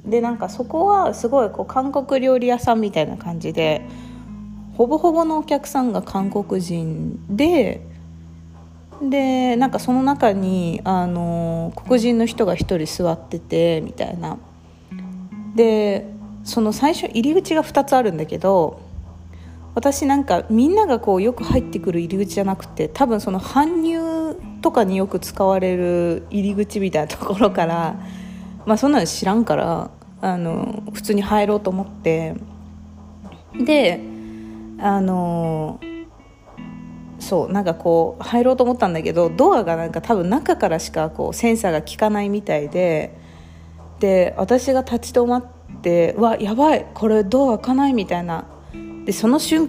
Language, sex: Japanese, female